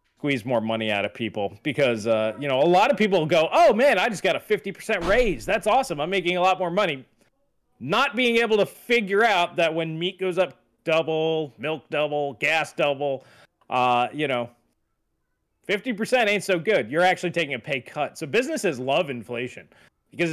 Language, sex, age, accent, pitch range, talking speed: English, male, 30-49, American, 115-175 Hz, 190 wpm